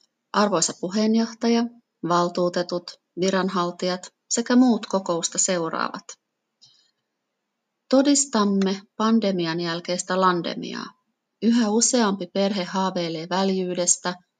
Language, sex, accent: Finnish, female, native